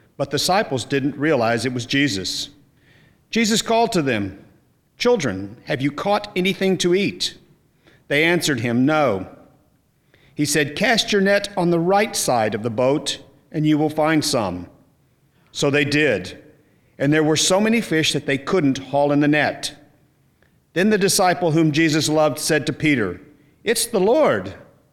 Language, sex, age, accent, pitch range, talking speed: English, male, 50-69, American, 140-175 Hz, 165 wpm